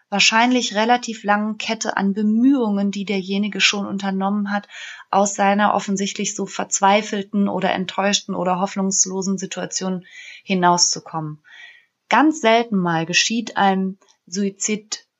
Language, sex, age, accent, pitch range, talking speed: German, female, 20-39, German, 185-210 Hz, 110 wpm